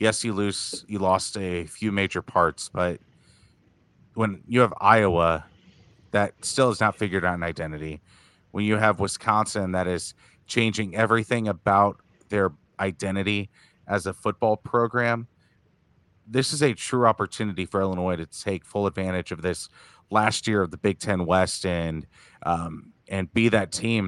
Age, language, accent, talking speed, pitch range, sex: 30-49, English, American, 155 wpm, 90-110 Hz, male